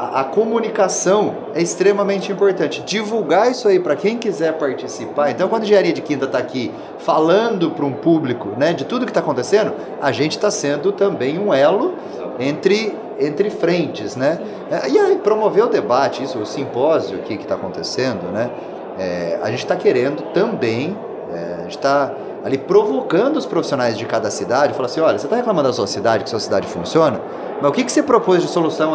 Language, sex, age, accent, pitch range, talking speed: Portuguese, male, 30-49, Brazilian, 165-235 Hz, 185 wpm